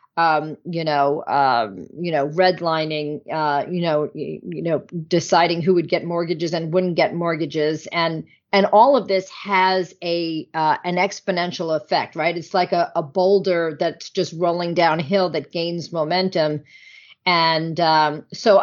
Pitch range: 155-180 Hz